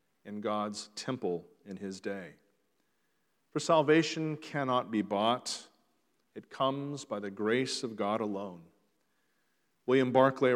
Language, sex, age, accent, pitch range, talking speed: English, male, 40-59, American, 115-155 Hz, 120 wpm